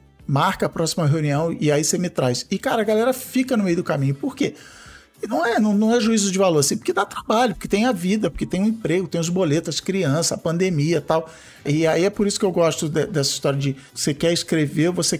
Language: Portuguese